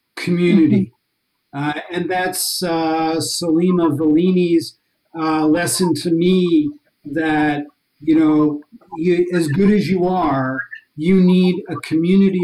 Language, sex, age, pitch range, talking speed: English, male, 50-69, 160-210 Hz, 115 wpm